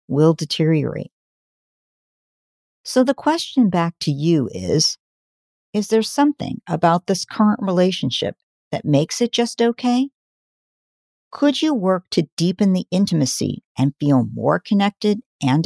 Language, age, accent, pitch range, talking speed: English, 50-69, American, 150-215 Hz, 125 wpm